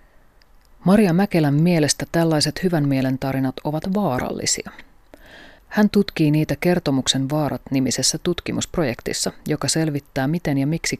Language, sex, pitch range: Finnish, female, 140-175 Hz